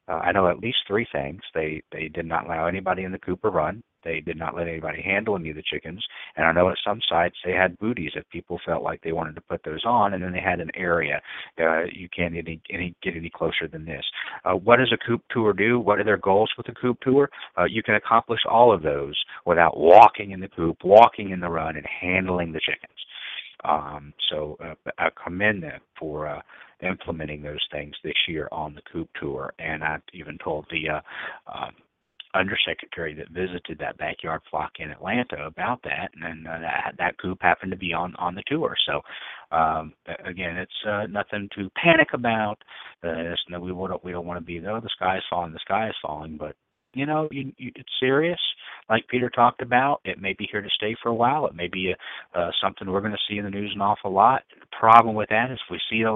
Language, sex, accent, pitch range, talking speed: English, male, American, 85-110 Hz, 230 wpm